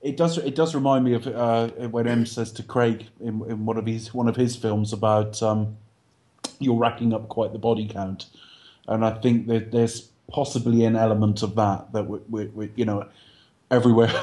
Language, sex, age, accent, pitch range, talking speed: English, male, 30-49, British, 110-120 Hz, 200 wpm